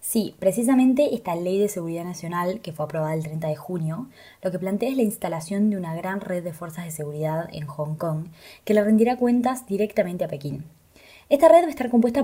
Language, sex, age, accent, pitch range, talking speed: Spanish, female, 20-39, Argentinian, 170-240 Hz, 215 wpm